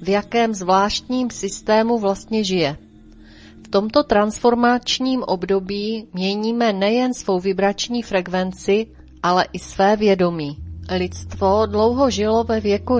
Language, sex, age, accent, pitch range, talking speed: Czech, female, 30-49, native, 170-225 Hz, 110 wpm